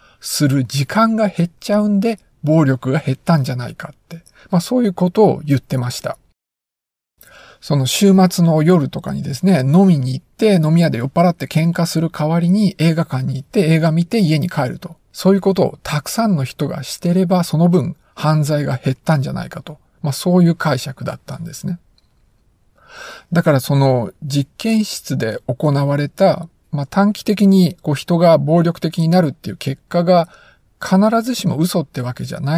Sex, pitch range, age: male, 135-185 Hz, 50-69